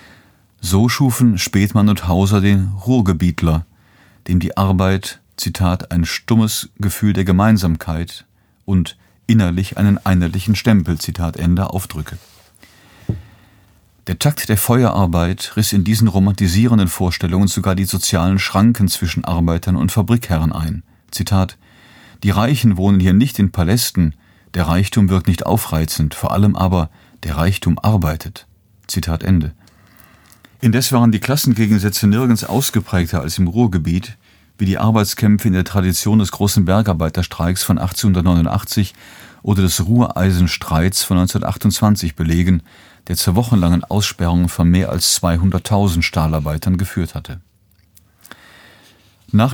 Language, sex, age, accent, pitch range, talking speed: German, male, 40-59, German, 90-110 Hz, 120 wpm